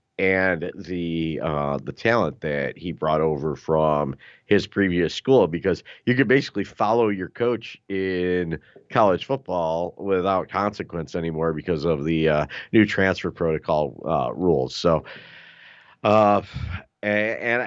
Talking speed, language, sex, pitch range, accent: 130 wpm, English, male, 85-110 Hz, American